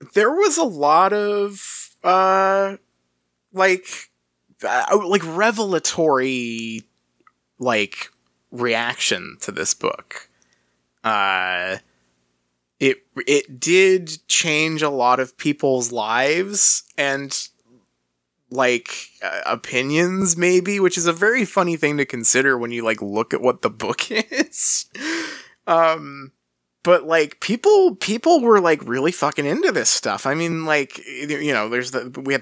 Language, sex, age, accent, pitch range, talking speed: English, male, 20-39, American, 110-185 Hz, 125 wpm